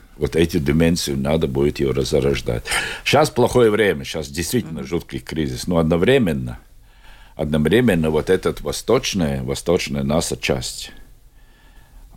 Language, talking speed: Russian, 110 wpm